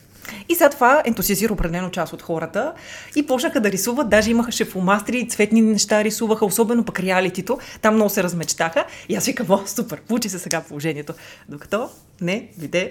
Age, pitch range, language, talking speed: 30-49, 175-275 Hz, Bulgarian, 170 wpm